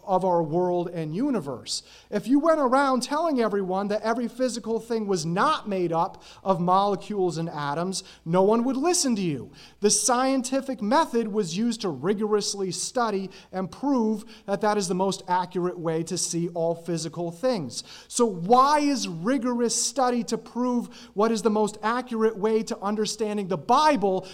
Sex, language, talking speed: male, English, 170 wpm